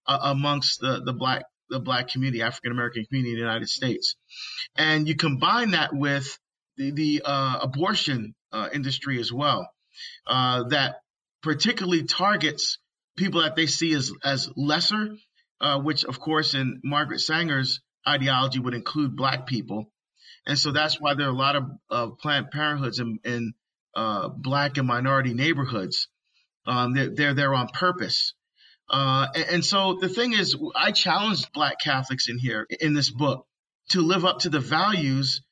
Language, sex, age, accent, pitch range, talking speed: English, male, 40-59, American, 135-170 Hz, 165 wpm